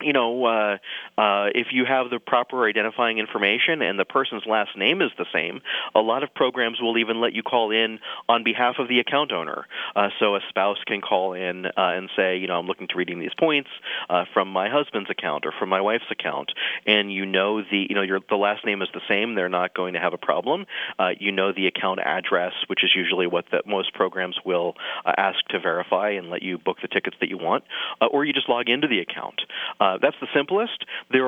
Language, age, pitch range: English, 30-49, 95-125 Hz